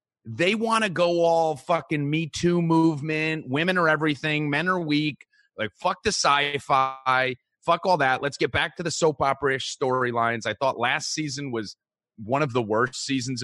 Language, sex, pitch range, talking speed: English, male, 120-165 Hz, 180 wpm